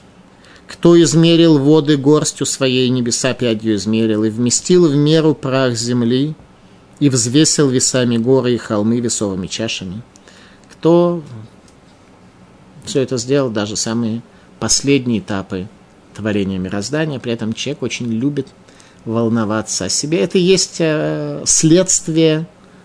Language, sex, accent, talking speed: Russian, male, native, 115 wpm